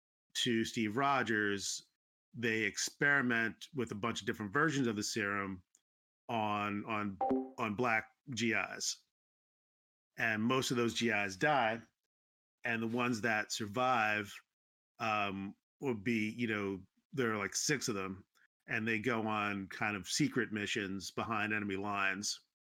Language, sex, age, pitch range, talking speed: English, male, 40-59, 100-120 Hz, 135 wpm